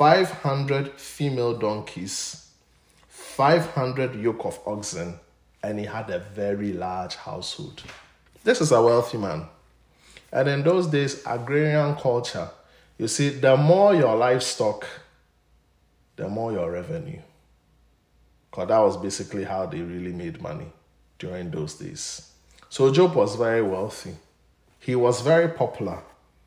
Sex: male